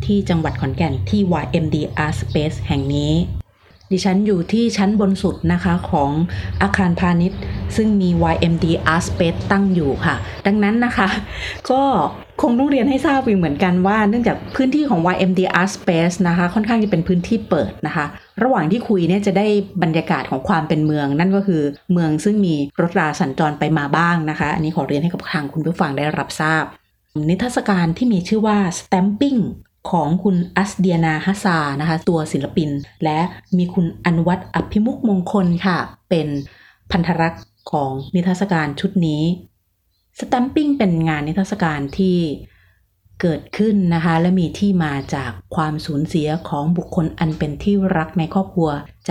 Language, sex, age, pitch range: Thai, female, 30-49, 155-195 Hz